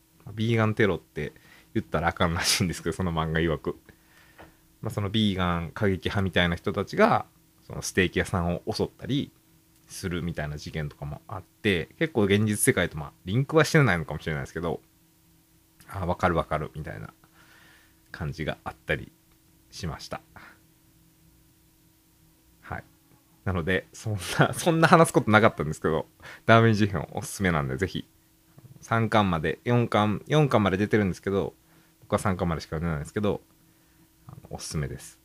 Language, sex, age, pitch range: Japanese, male, 20-39, 85-120 Hz